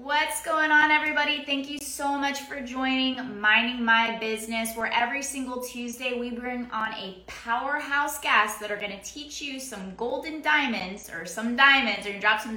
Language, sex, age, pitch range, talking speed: English, female, 20-39, 215-270 Hz, 180 wpm